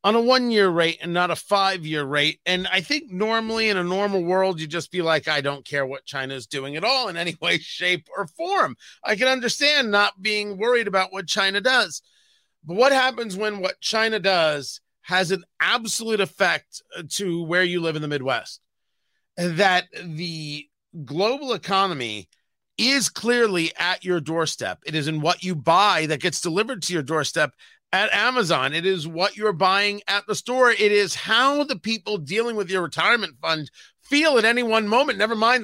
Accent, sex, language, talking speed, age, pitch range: American, male, English, 185 wpm, 40-59, 170-225 Hz